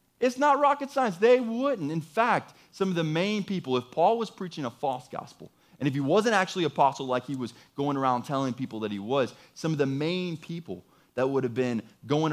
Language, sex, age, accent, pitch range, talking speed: English, male, 20-39, American, 110-155 Hz, 230 wpm